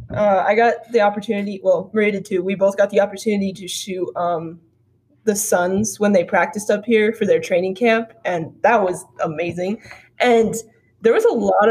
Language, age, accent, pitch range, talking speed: English, 20-39, American, 180-220 Hz, 175 wpm